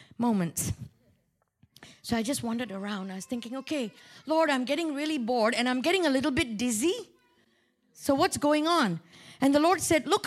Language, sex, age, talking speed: English, female, 50-69, 180 wpm